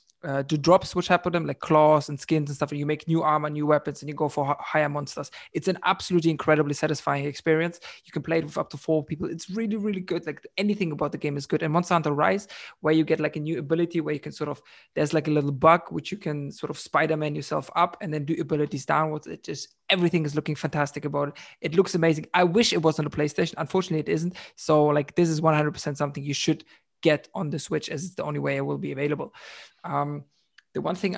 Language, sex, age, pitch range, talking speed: English, male, 20-39, 145-165 Hz, 250 wpm